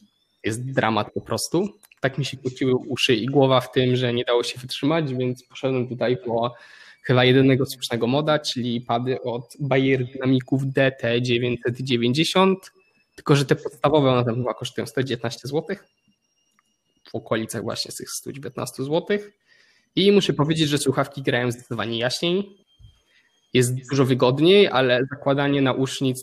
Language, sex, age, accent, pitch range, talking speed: Polish, male, 20-39, native, 125-150 Hz, 145 wpm